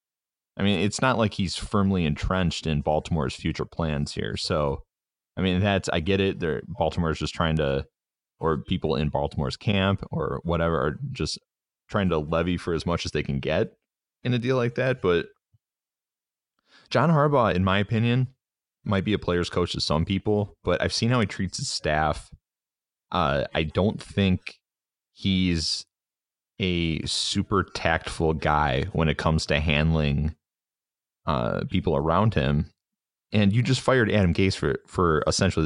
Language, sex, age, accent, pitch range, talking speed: English, male, 30-49, American, 80-100 Hz, 165 wpm